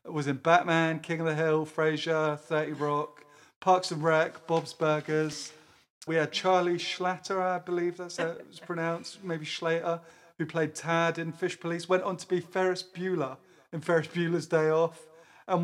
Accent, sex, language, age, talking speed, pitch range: British, male, English, 30-49, 175 wpm, 160-180 Hz